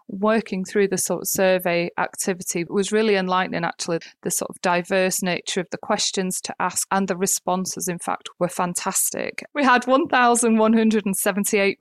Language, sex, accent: English, female, British